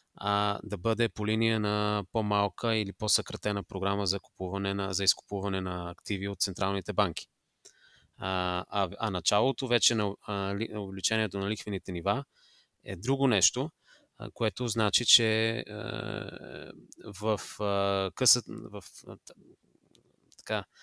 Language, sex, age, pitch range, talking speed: Bulgarian, male, 20-39, 95-115 Hz, 125 wpm